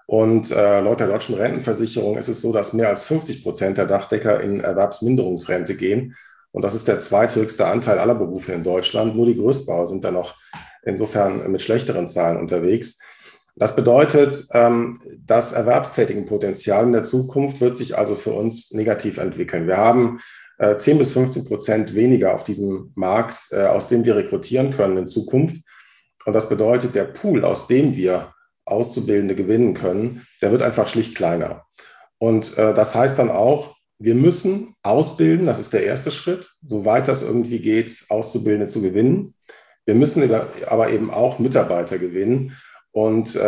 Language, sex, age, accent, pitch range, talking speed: German, male, 40-59, German, 105-125 Hz, 160 wpm